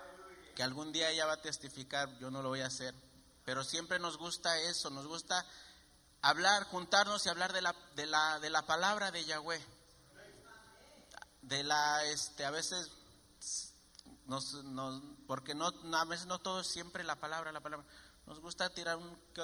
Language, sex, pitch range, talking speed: English, male, 140-180 Hz, 175 wpm